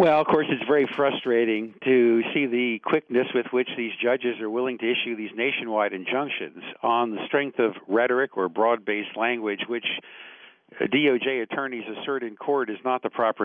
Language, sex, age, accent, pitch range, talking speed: English, male, 50-69, American, 105-130 Hz, 175 wpm